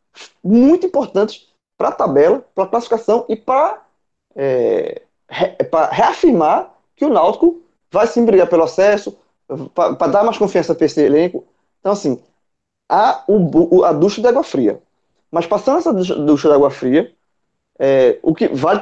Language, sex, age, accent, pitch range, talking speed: Portuguese, male, 20-39, Brazilian, 155-225 Hz, 160 wpm